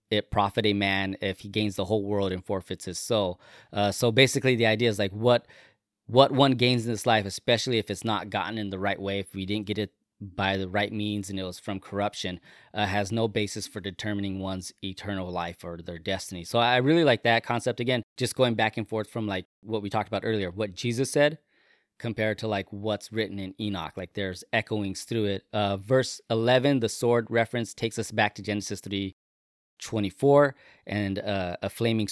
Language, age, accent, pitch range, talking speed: English, 20-39, American, 100-115 Hz, 210 wpm